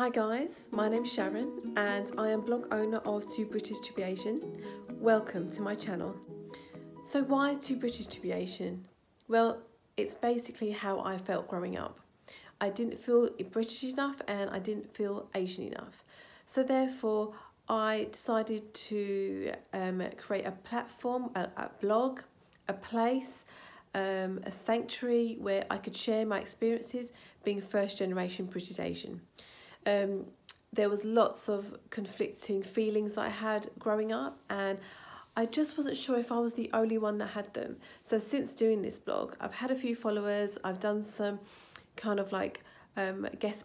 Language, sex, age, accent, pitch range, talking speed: English, female, 40-59, British, 200-235 Hz, 155 wpm